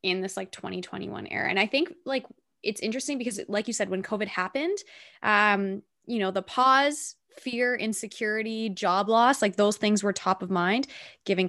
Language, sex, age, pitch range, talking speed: English, female, 20-39, 185-245 Hz, 185 wpm